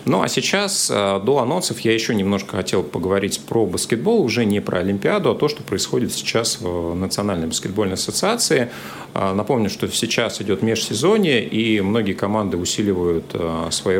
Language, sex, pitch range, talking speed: Russian, male, 85-110 Hz, 150 wpm